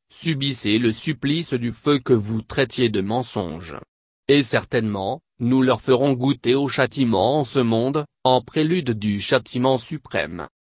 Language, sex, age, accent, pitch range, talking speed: French, male, 30-49, French, 115-140 Hz, 145 wpm